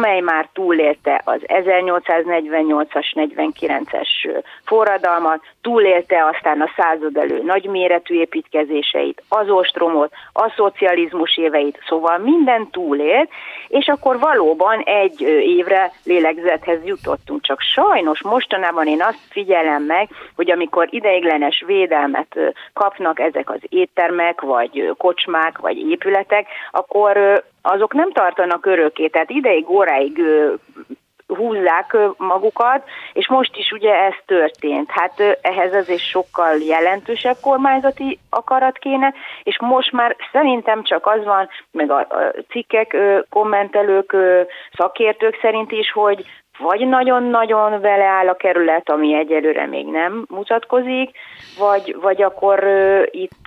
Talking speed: 115 wpm